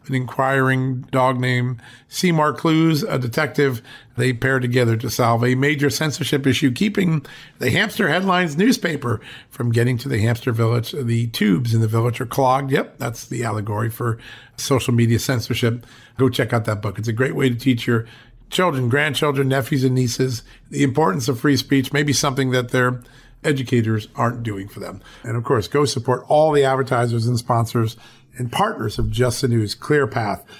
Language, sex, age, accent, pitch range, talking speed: English, male, 40-59, American, 115-135 Hz, 180 wpm